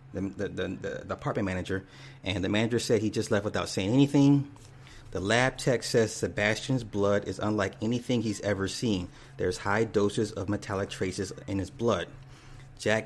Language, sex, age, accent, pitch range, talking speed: English, male, 30-49, American, 105-130 Hz, 170 wpm